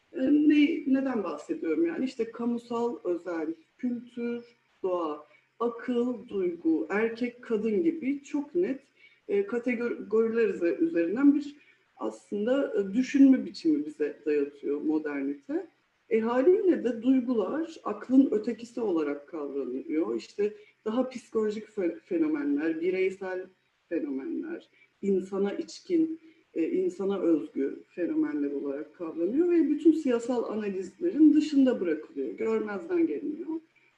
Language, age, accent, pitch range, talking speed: Turkish, 60-79, native, 185-310 Hz, 95 wpm